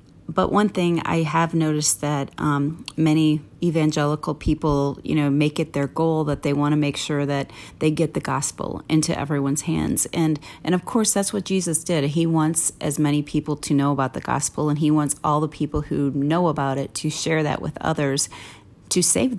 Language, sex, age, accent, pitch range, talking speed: English, female, 30-49, American, 145-170 Hz, 205 wpm